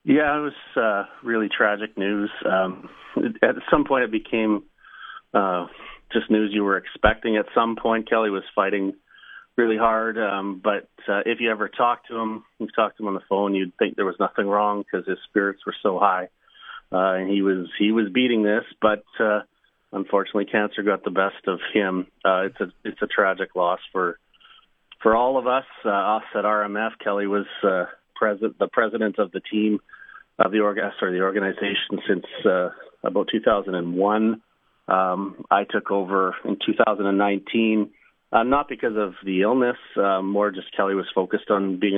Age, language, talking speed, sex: 40-59, English, 180 wpm, male